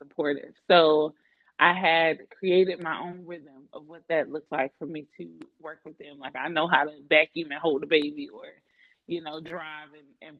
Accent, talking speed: American, 200 wpm